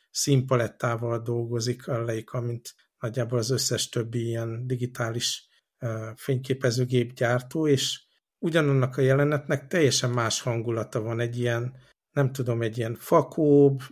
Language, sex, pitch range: Hungarian, male, 115-135 Hz